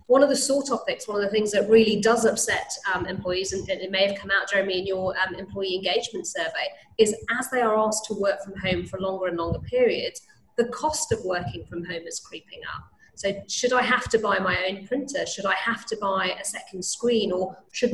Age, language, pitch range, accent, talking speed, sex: 30-49, English, 185-225 Hz, British, 240 wpm, female